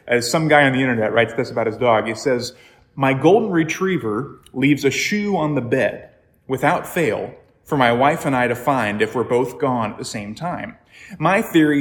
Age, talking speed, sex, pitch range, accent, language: 30-49, 210 wpm, male, 125-170 Hz, American, English